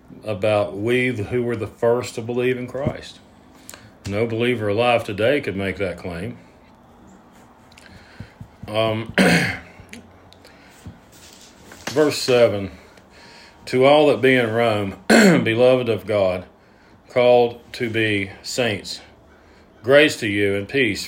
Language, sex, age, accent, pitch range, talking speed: English, male, 40-59, American, 100-125 Hz, 110 wpm